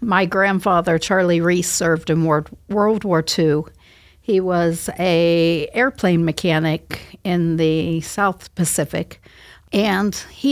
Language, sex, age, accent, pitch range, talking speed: English, female, 50-69, American, 160-195 Hz, 115 wpm